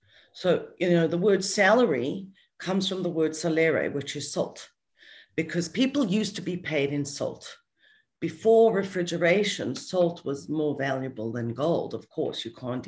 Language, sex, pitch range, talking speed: English, female, 135-175 Hz, 160 wpm